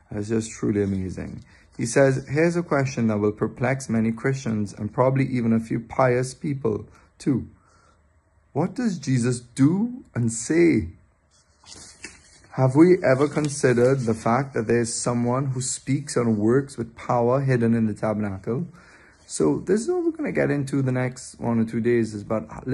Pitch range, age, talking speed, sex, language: 110-135 Hz, 30-49, 165 wpm, male, English